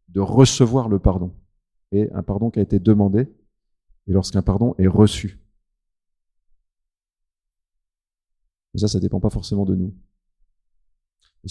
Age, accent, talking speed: 40-59, French, 135 wpm